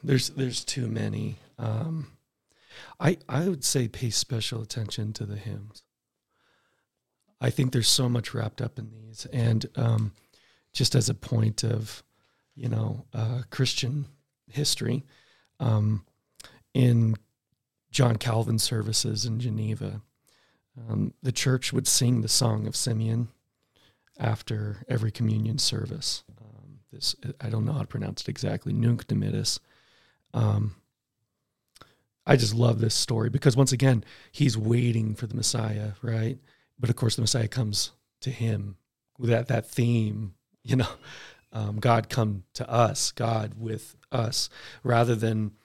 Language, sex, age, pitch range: English, male, 40-59, 110-130 Hz